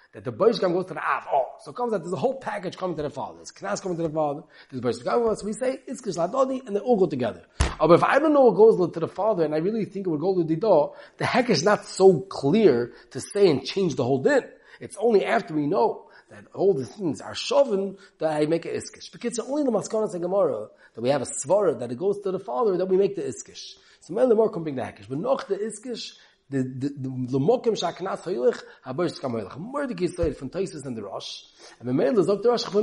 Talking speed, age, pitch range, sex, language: 240 wpm, 30-49, 160-225 Hz, male, English